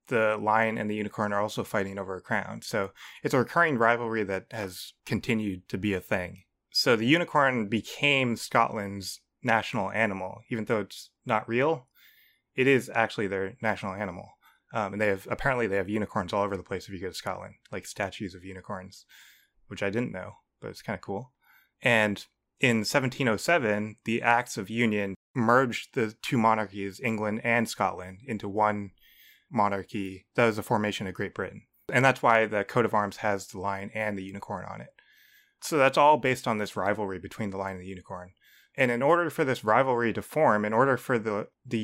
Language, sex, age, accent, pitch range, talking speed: English, male, 20-39, American, 100-120 Hz, 195 wpm